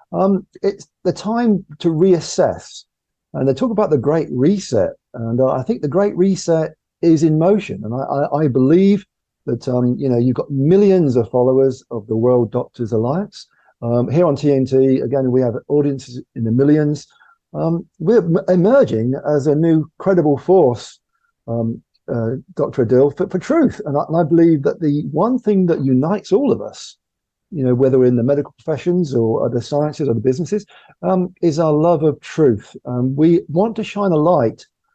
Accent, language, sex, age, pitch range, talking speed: British, English, male, 50-69, 130-175 Hz, 185 wpm